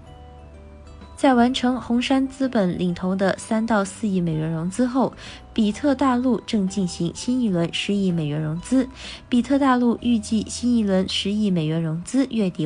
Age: 20-39